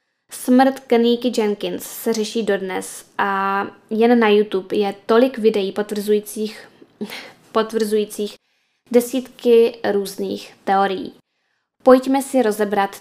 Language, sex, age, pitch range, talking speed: Czech, female, 10-29, 200-240 Hz, 95 wpm